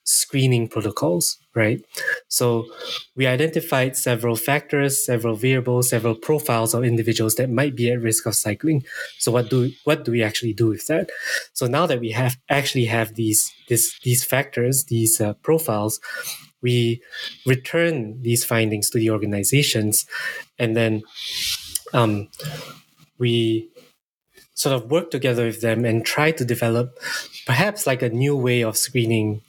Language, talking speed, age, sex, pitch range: English, 150 wpm, 20-39, male, 115-130 Hz